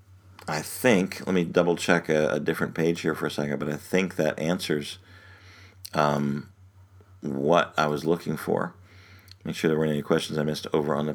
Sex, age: male, 50-69